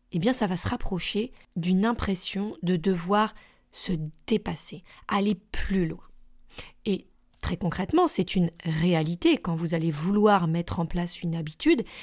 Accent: French